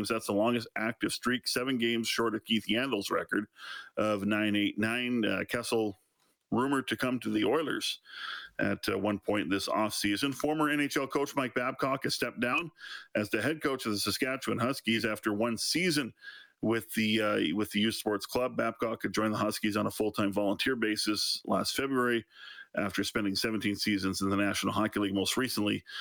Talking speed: 180 wpm